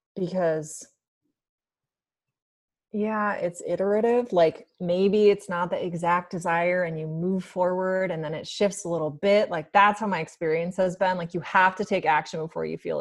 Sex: female